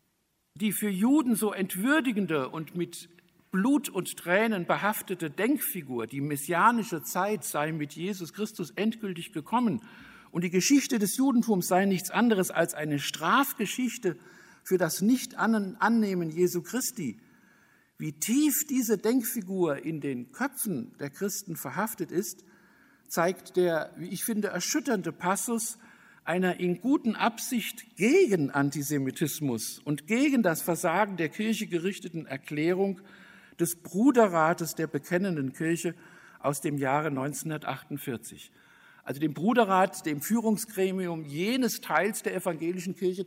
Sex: male